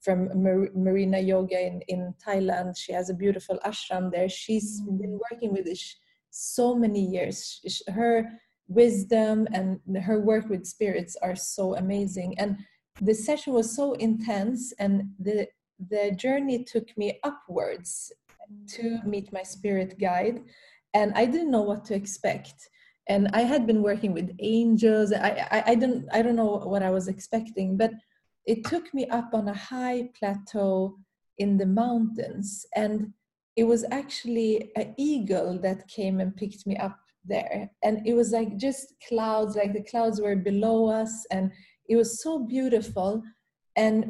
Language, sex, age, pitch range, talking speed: English, female, 30-49, 195-235 Hz, 160 wpm